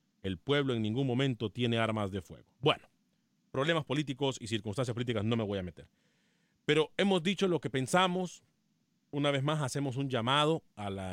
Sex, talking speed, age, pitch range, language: male, 185 wpm, 40-59, 115-145 Hz, Spanish